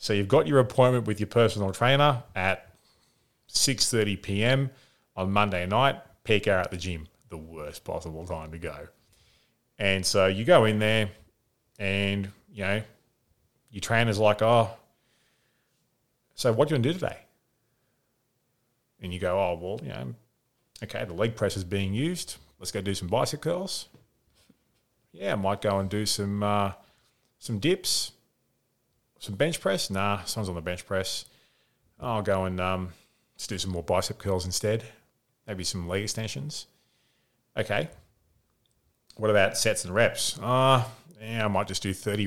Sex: male